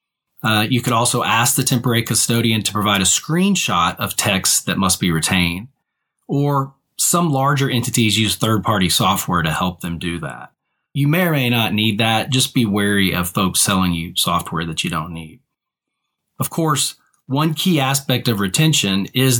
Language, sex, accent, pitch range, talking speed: English, male, American, 105-135 Hz, 175 wpm